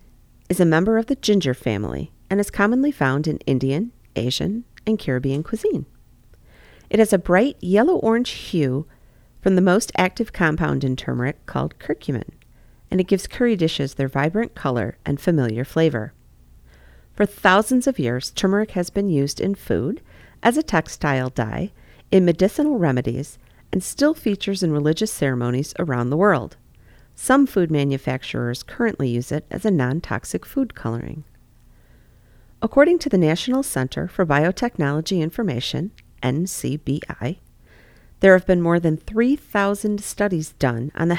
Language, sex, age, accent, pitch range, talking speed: English, female, 40-59, American, 135-210 Hz, 145 wpm